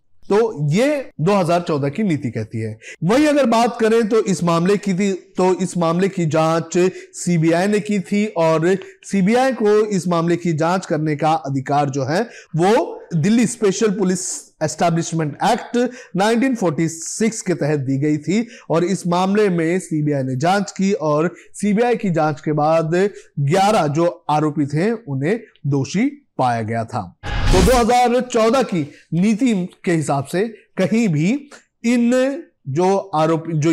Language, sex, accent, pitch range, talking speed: Hindi, male, native, 155-220 Hz, 150 wpm